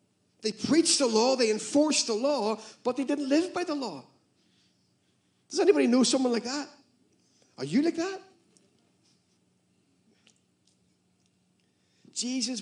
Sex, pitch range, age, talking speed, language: male, 185-235 Hz, 50-69, 125 wpm, English